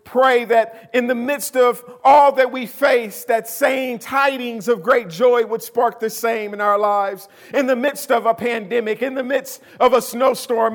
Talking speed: 195 wpm